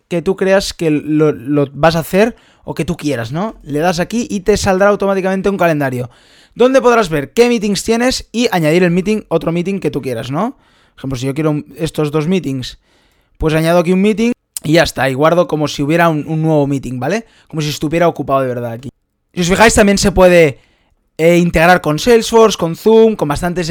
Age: 20-39